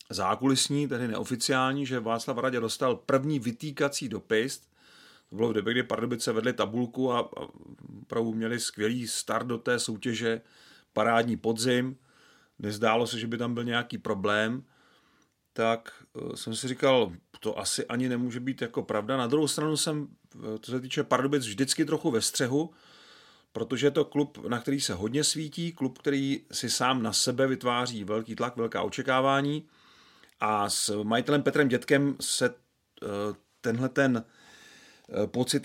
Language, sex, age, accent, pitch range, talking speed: Czech, male, 40-59, native, 115-140 Hz, 150 wpm